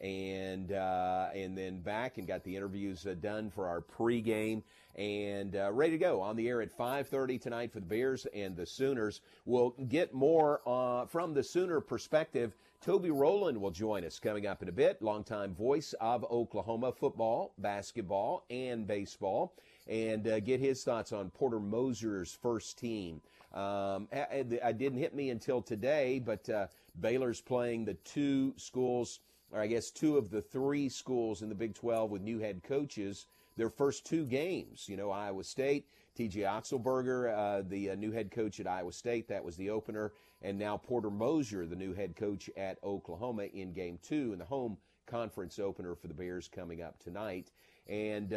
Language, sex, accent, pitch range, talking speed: English, male, American, 100-130 Hz, 180 wpm